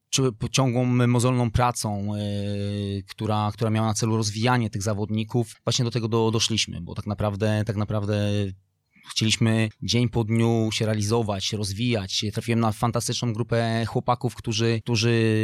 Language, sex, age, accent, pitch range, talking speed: Polish, male, 20-39, native, 105-120 Hz, 145 wpm